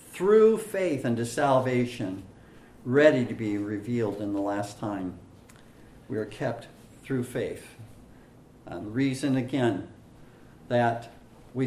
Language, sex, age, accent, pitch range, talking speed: English, male, 50-69, American, 115-145 Hz, 115 wpm